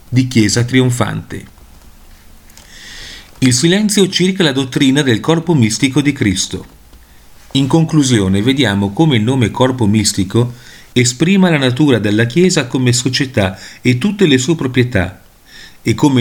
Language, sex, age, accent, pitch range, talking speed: Italian, male, 40-59, native, 110-145 Hz, 130 wpm